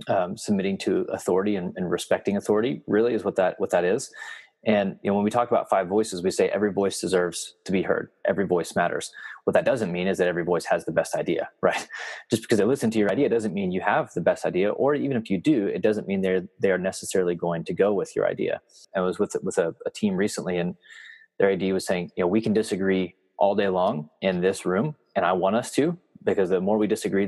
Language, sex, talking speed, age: English, male, 250 wpm, 20-39